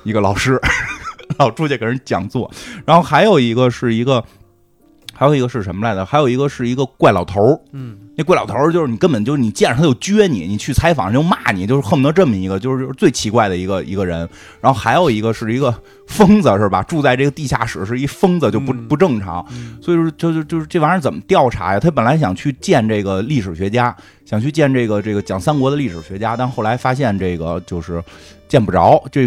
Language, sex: Chinese, male